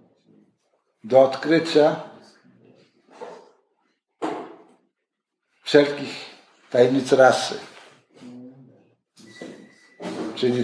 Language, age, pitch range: Polish, 60-79, 125-155 Hz